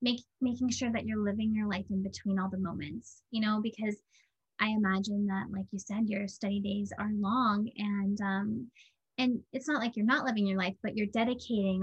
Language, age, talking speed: English, 20-39, 205 wpm